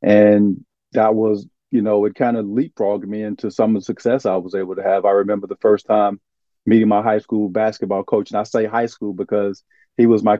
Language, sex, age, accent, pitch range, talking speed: English, male, 40-59, American, 105-120 Hz, 230 wpm